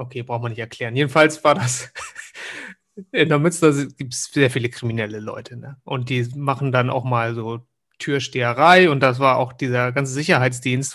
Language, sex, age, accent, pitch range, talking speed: German, male, 30-49, German, 130-175 Hz, 185 wpm